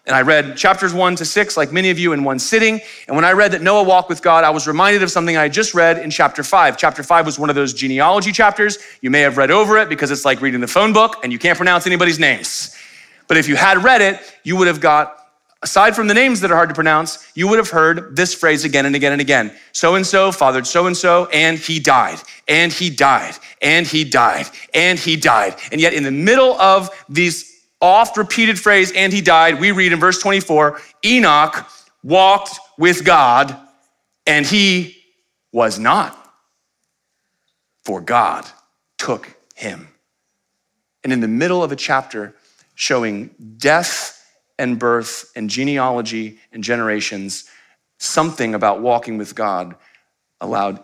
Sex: male